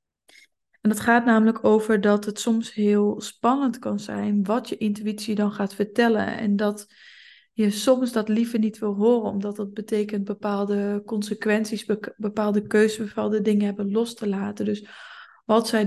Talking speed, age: 165 wpm, 20-39